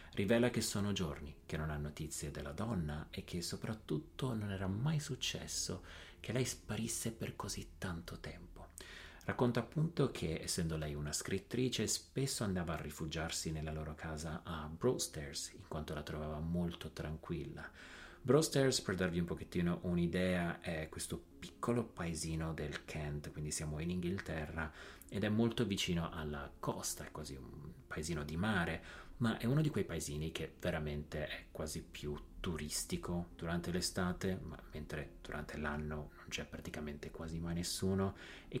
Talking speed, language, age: 150 wpm, Italian, 30-49